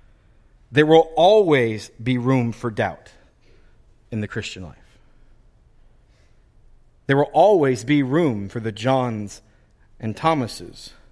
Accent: American